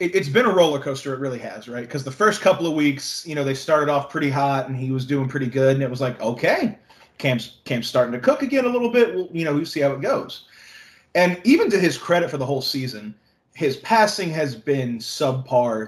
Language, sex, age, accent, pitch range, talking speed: English, male, 20-39, American, 125-160 Hz, 240 wpm